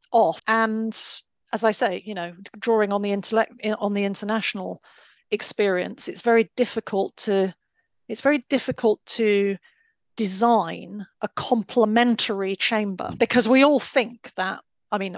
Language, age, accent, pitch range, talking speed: English, 40-59, British, 200-225 Hz, 135 wpm